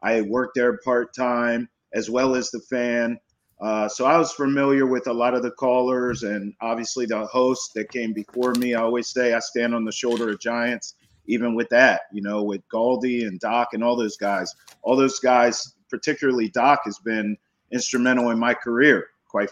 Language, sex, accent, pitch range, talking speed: English, male, American, 110-130 Hz, 195 wpm